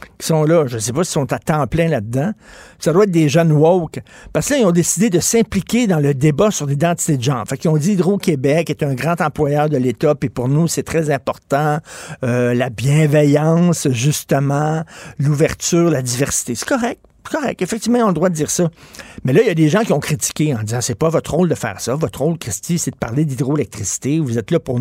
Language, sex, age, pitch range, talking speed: French, male, 50-69, 135-180 Hz, 240 wpm